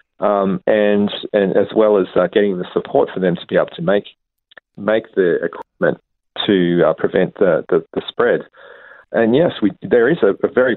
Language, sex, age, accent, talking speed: English, male, 40-59, Australian, 195 wpm